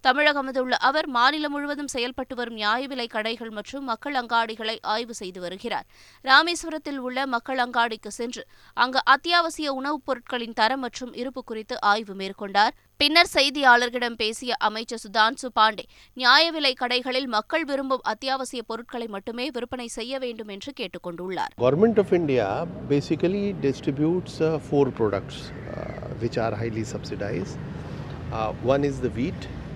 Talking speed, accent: 95 wpm, native